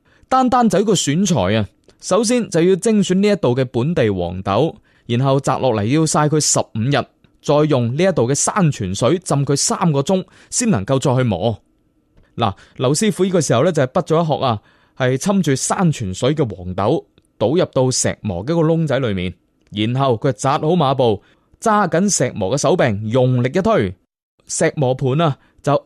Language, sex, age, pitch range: Chinese, male, 20-39, 125-175 Hz